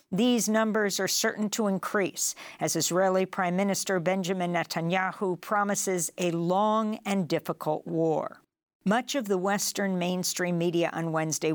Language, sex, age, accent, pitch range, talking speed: English, female, 50-69, American, 170-200 Hz, 135 wpm